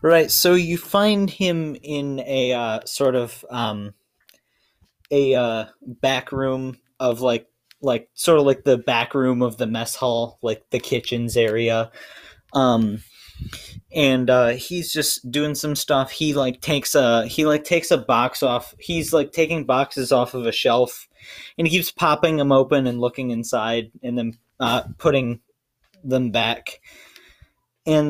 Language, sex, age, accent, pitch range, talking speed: English, male, 20-39, American, 115-140 Hz, 160 wpm